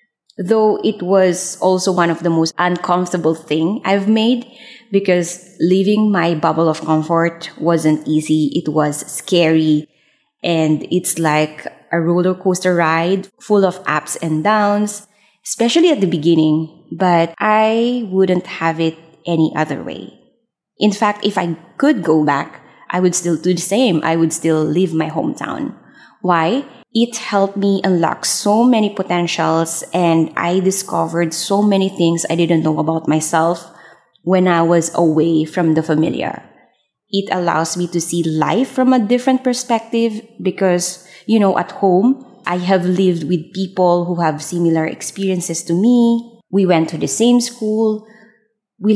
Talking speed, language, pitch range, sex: 155 wpm, English, 165-210 Hz, female